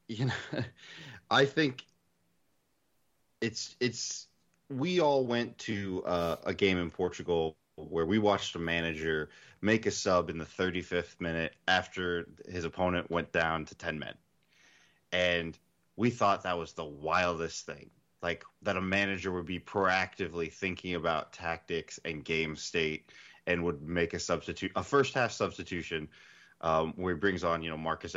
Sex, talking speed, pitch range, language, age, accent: male, 155 wpm, 85-110 Hz, English, 20-39, American